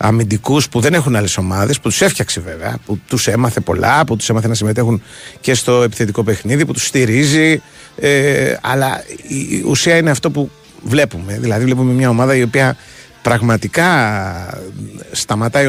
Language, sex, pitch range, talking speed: Greek, male, 110-140 Hz, 155 wpm